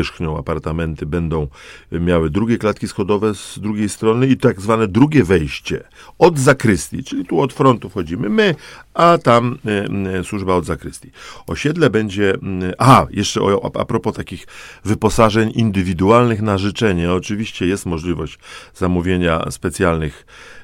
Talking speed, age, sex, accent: 130 wpm, 40-59, male, native